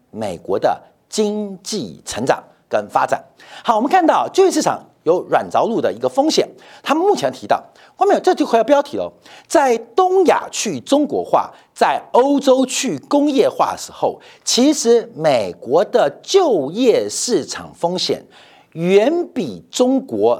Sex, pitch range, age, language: male, 215-355 Hz, 50-69, Chinese